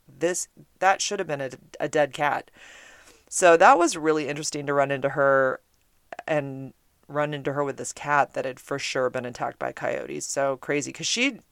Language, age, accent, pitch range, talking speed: English, 30-49, American, 140-160 Hz, 195 wpm